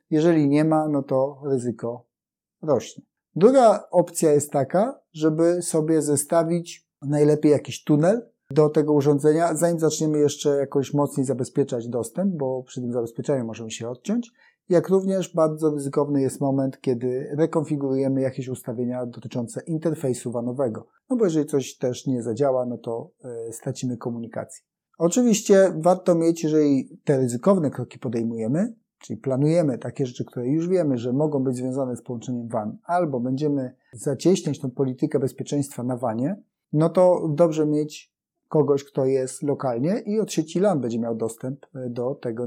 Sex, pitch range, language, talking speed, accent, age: male, 130-165 Hz, Polish, 150 wpm, native, 30-49